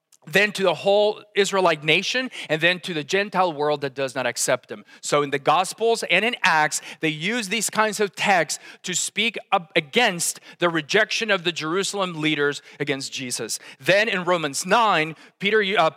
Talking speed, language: 180 wpm, English